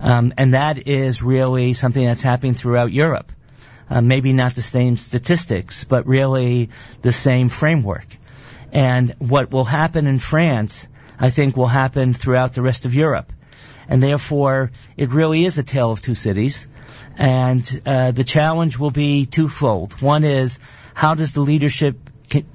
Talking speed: 160 wpm